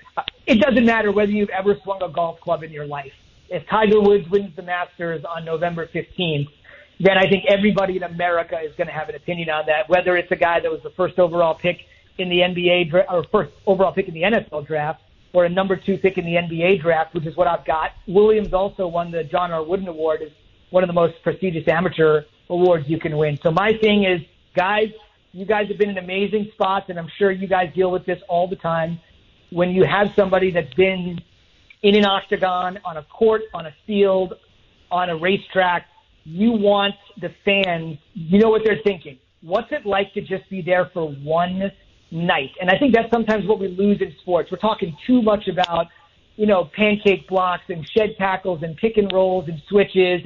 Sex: male